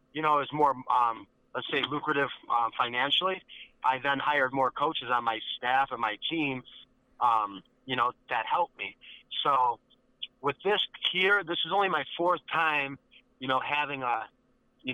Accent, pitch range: American, 125-145 Hz